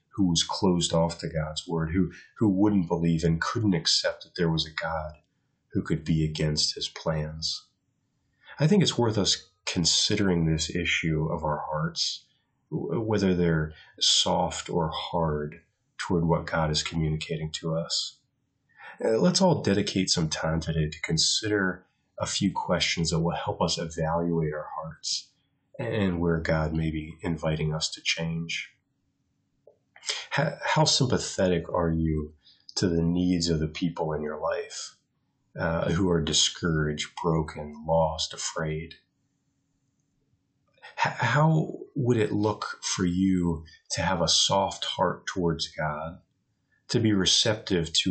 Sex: male